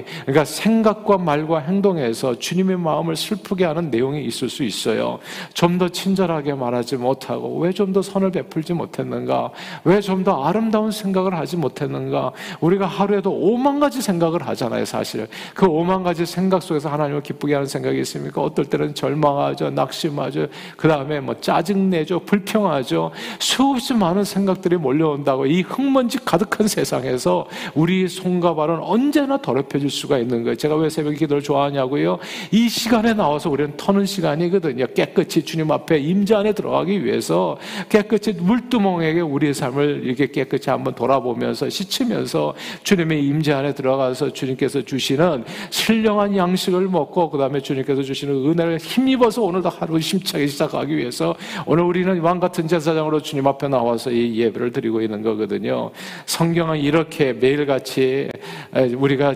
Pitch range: 140-190 Hz